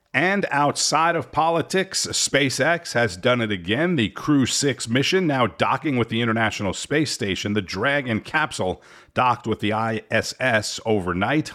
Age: 50-69